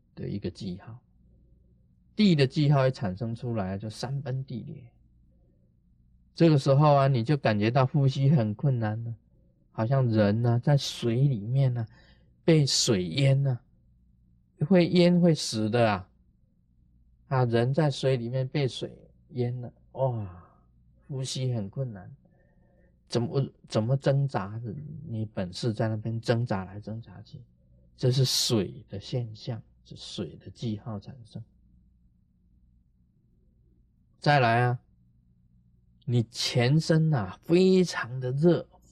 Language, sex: Chinese, male